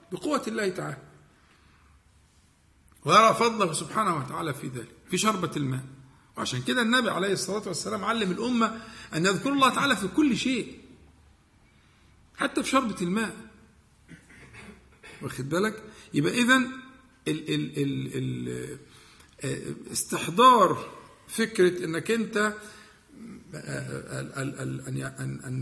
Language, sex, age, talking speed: Arabic, male, 50-69, 110 wpm